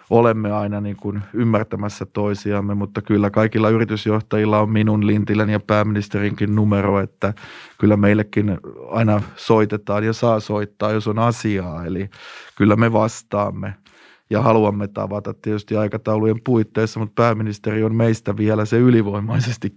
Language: Finnish